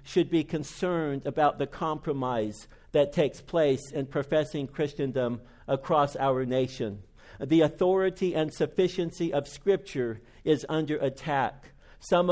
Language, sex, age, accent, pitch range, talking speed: English, male, 50-69, American, 135-170 Hz, 120 wpm